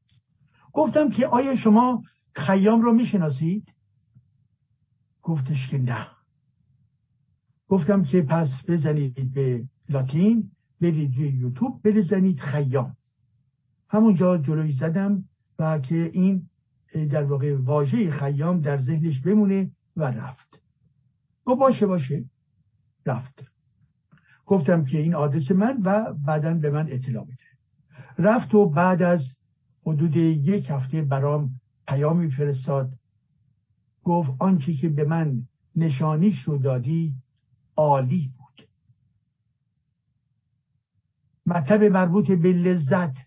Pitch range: 130-175 Hz